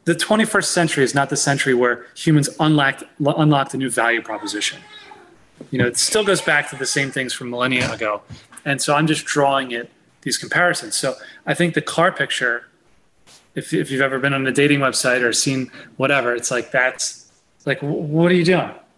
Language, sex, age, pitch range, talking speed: English, male, 30-49, 140-175 Hz, 195 wpm